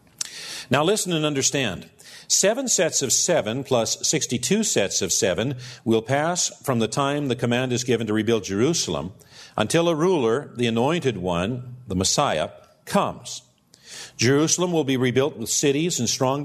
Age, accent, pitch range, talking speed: 50-69, American, 115-145 Hz, 155 wpm